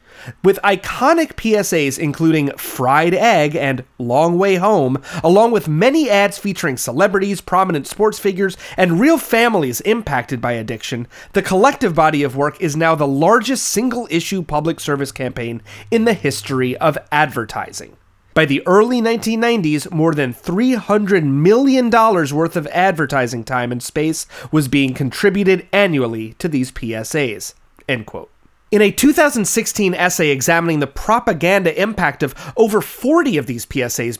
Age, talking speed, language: 30-49, 140 wpm, English